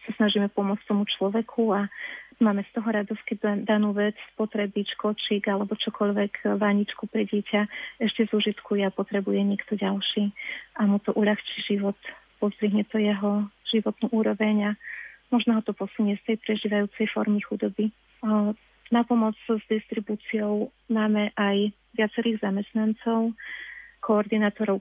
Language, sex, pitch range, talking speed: Slovak, female, 205-220 Hz, 135 wpm